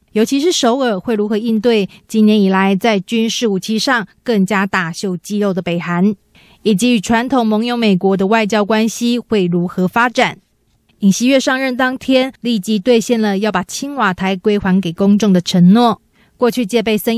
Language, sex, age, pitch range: Chinese, female, 20-39, 195-235 Hz